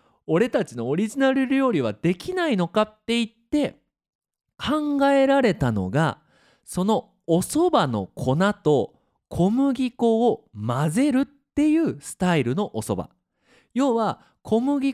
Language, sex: Japanese, male